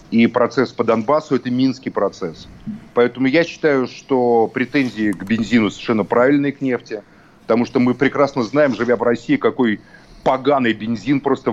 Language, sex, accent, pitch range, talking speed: Russian, male, native, 120-145 Hz, 160 wpm